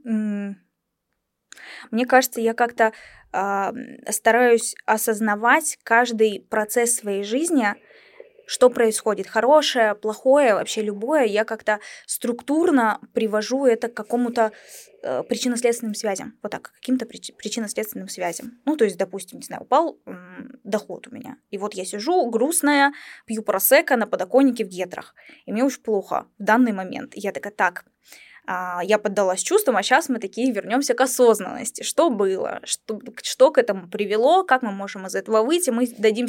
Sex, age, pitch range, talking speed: female, 10-29, 205-255 Hz, 145 wpm